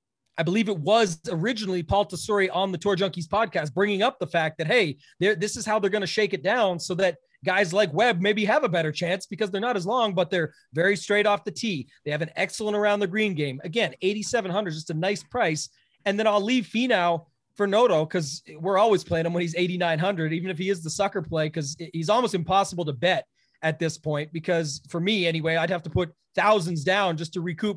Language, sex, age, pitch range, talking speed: English, male, 30-49, 170-210 Hz, 235 wpm